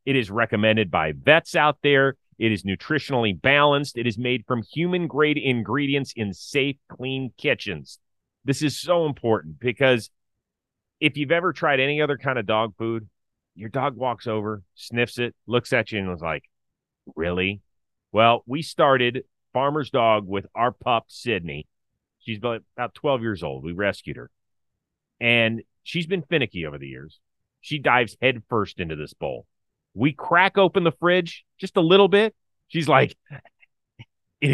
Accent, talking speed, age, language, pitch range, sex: American, 160 wpm, 30-49, English, 105-145 Hz, male